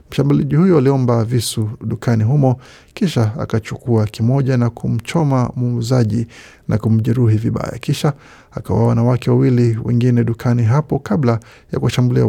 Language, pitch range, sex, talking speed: Swahili, 115-135 Hz, male, 125 wpm